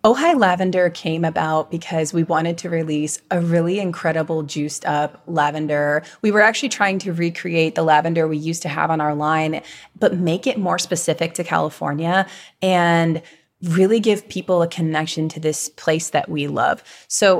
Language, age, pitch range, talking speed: English, 20-39, 160-190 Hz, 170 wpm